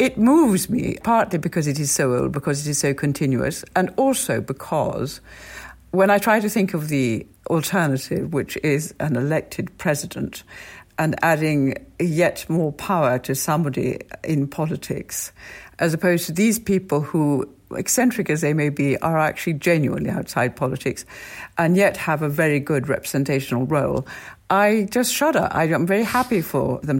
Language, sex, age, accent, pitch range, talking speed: English, female, 60-79, British, 140-190 Hz, 160 wpm